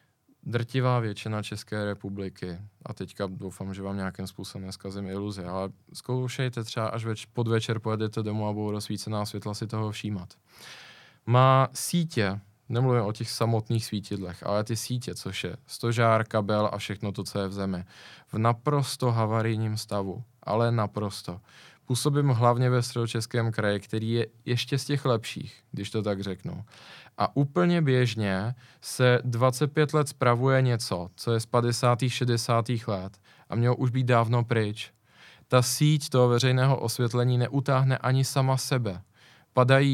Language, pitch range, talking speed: Czech, 105-125 Hz, 155 wpm